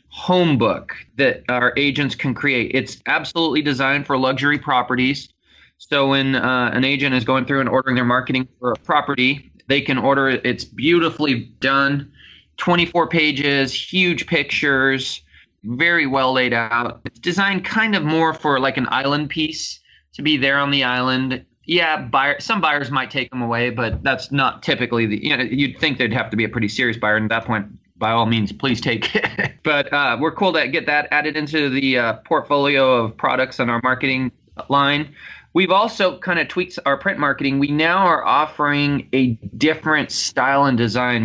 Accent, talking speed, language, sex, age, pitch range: American, 185 wpm, English, male, 20-39, 125-150 Hz